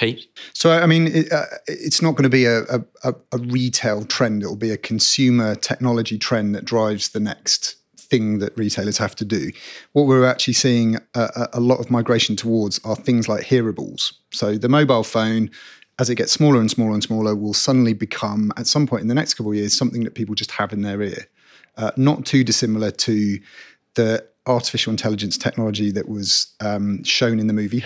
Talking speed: 195 wpm